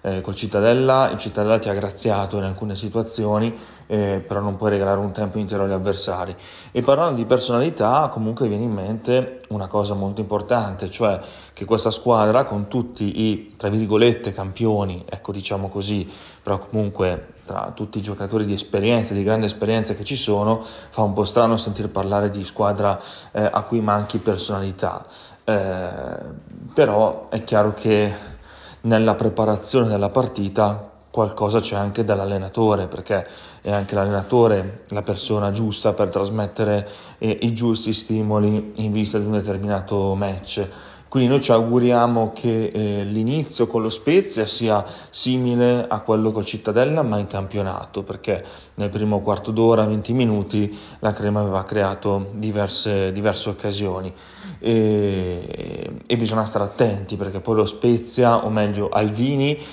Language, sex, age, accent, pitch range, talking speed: Italian, male, 30-49, native, 100-115 Hz, 150 wpm